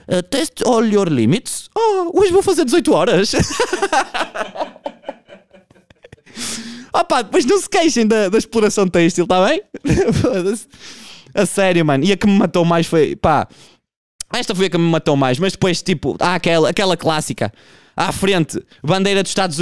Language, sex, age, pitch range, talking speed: Portuguese, male, 20-39, 160-220 Hz, 165 wpm